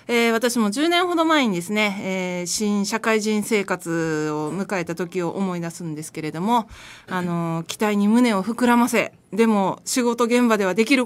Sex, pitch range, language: female, 180-240 Hz, Japanese